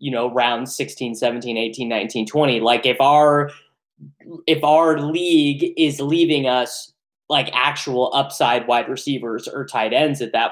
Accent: American